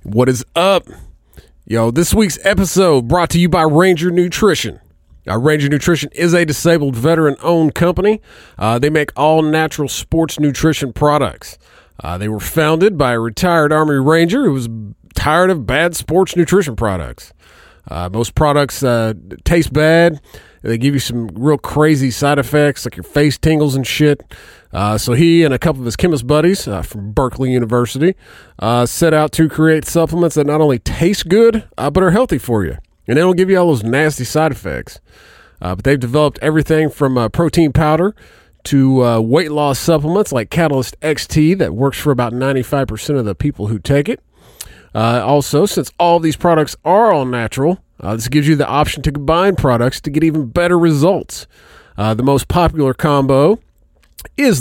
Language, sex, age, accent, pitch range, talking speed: English, male, 40-59, American, 125-165 Hz, 180 wpm